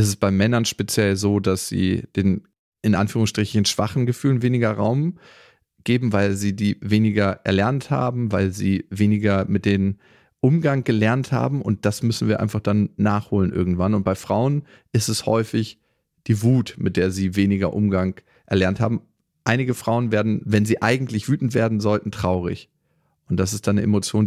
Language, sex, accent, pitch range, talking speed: German, male, German, 100-125 Hz, 170 wpm